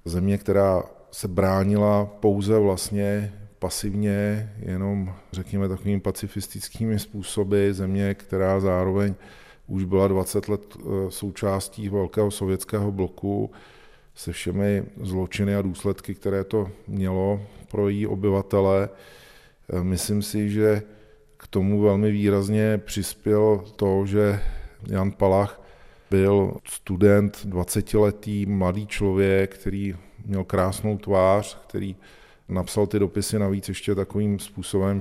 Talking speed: 110 wpm